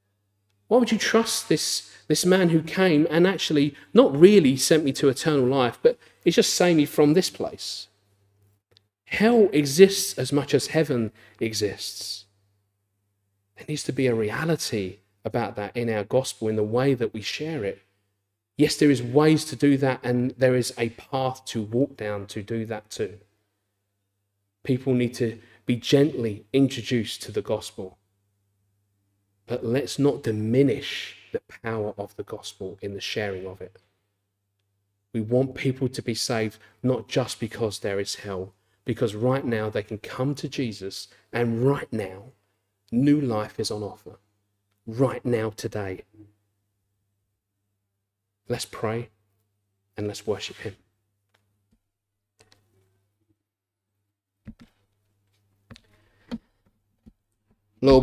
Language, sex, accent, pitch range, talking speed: English, male, British, 100-130 Hz, 135 wpm